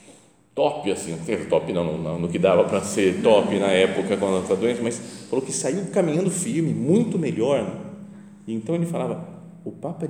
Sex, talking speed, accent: male, 180 wpm, Brazilian